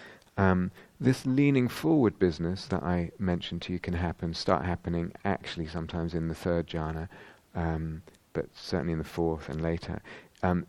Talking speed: 155 wpm